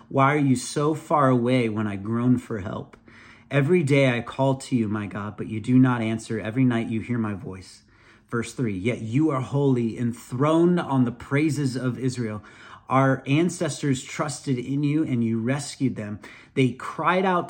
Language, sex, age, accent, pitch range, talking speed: English, male, 40-59, American, 115-135 Hz, 185 wpm